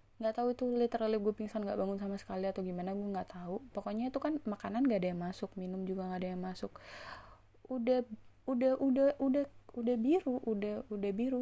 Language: Indonesian